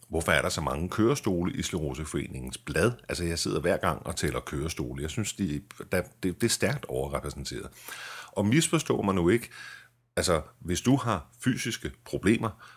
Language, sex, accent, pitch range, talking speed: Danish, male, native, 80-110 Hz, 160 wpm